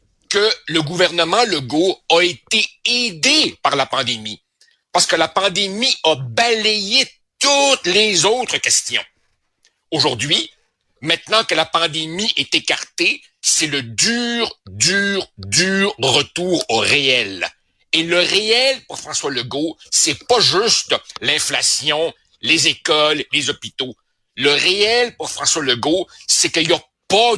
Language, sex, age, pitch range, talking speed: French, male, 60-79, 155-225 Hz, 130 wpm